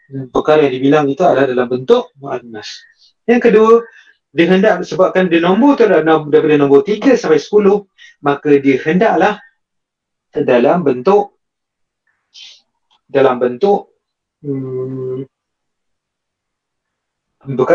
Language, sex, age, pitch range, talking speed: Malay, male, 30-49, 130-205 Hz, 95 wpm